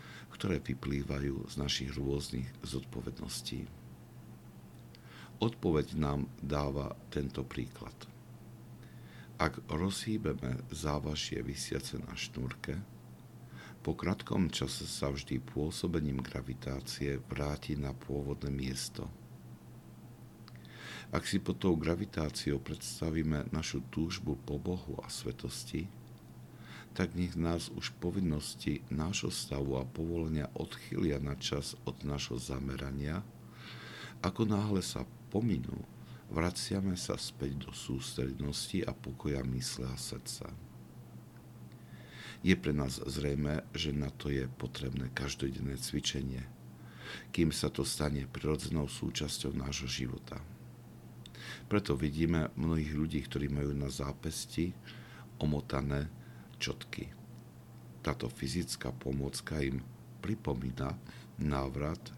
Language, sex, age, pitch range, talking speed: Slovak, male, 60-79, 65-80 Hz, 100 wpm